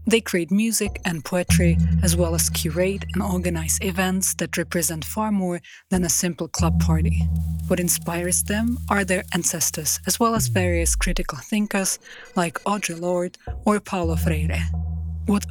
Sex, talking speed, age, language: female, 155 wpm, 30-49, Czech